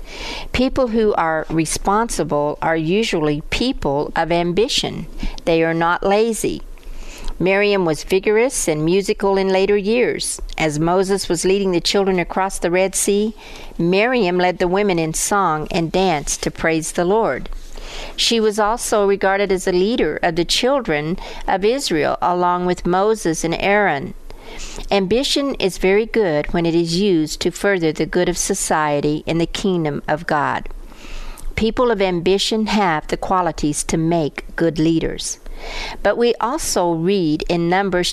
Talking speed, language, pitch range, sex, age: 150 wpm, English, 165-205 Hz, female, 50-69